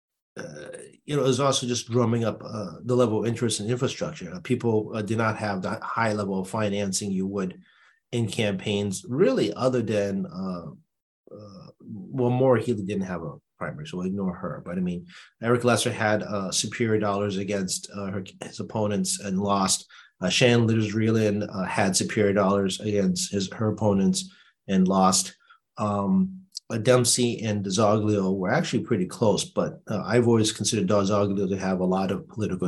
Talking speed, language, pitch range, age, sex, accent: 180 wpm, English, 100-125 Hz, 30-49, male, American